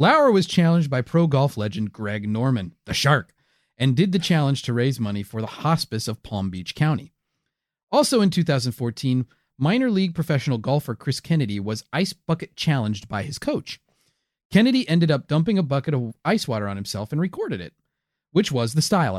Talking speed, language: 185 wpm, English